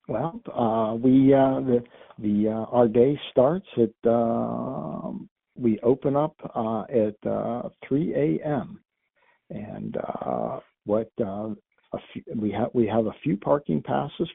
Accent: American